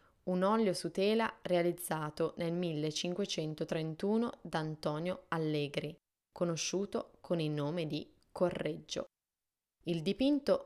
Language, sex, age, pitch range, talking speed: Italian, female, 20-39, 155-185 Hz, 100 wpm